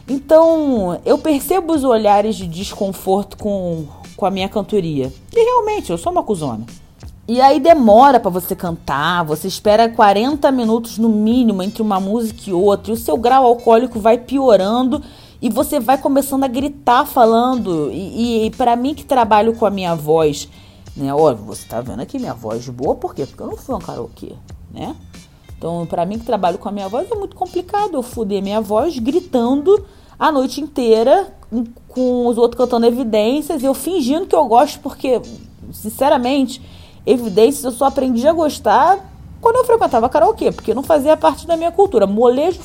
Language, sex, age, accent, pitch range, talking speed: Portuguese, female, 30-49, Brazilian, 205-300 Hz, 180 wpm